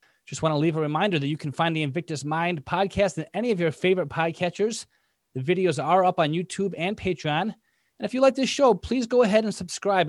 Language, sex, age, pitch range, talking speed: English, male, 30-49, 150-195 Hz, 225 wpm